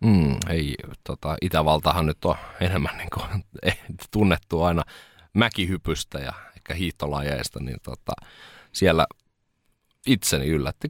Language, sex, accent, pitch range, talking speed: Finnish, male, native, 75-95 Hz, 110 wpm